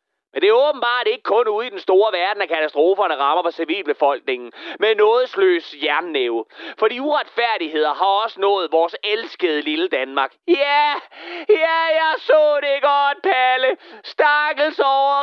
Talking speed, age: 160 wpm, 40-59